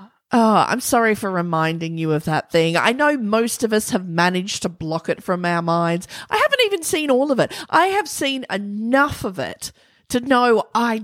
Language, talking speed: English, 205 wpm